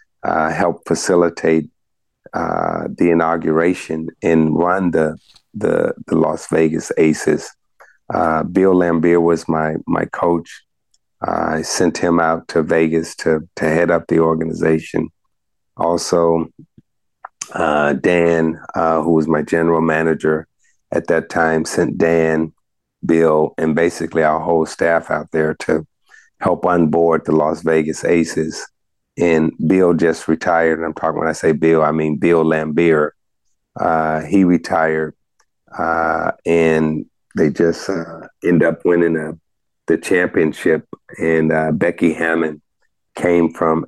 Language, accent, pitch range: English, American, 80-85 Hz